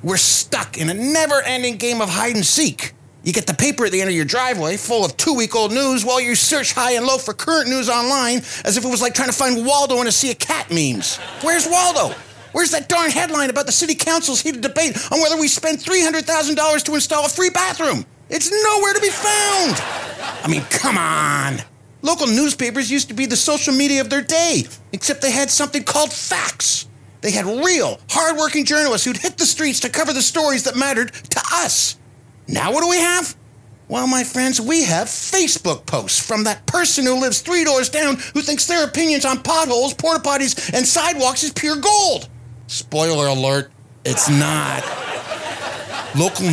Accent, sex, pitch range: American, male, 185-300 Hz